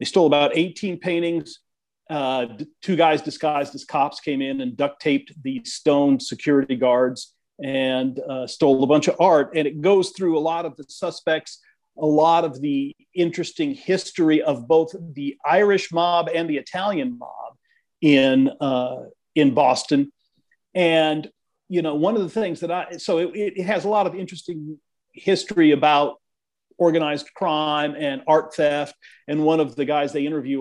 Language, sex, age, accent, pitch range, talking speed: English, male, 40-59, American, 145-190 Hz, 170 wpm